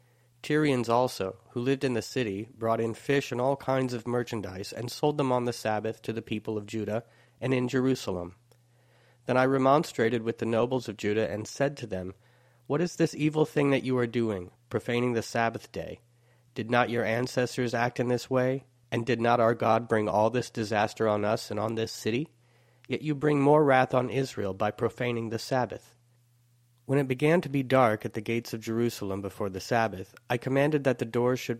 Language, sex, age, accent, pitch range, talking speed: English, male, 40-59, American, 110-130 Hz, 205 wpm